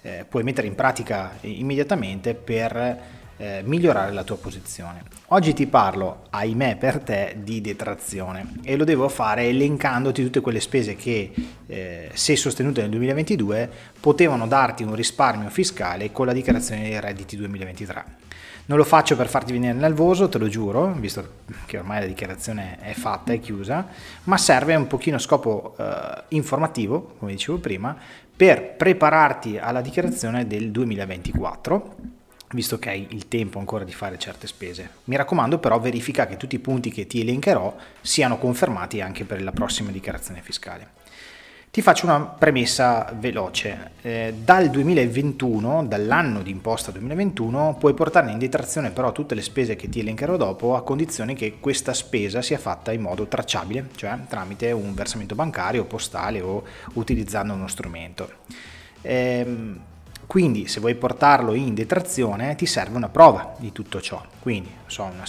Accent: native